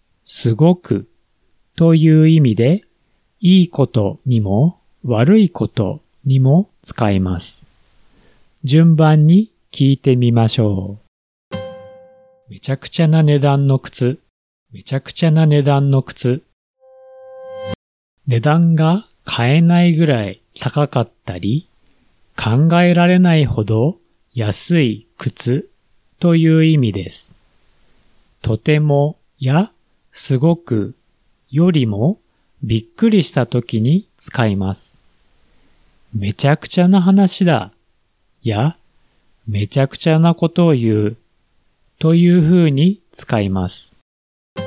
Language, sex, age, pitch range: Japanese, male, 40-59, 115-170 Hz